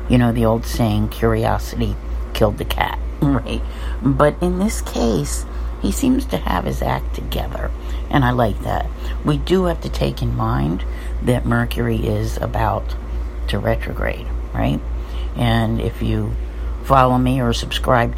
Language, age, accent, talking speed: English, 60-79, American, 150 wpm